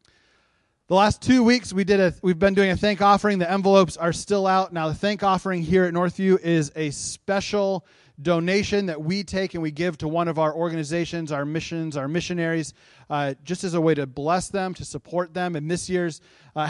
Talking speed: 210 wpm